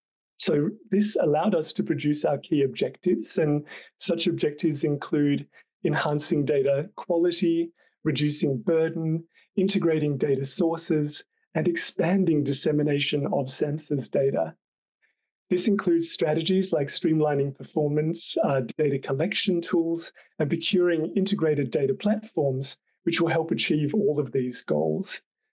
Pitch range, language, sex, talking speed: 140-175 Hz, English, male, 120 wpm